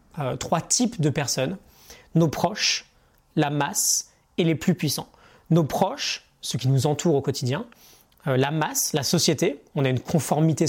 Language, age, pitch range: French, 20-39, 135-170 Hz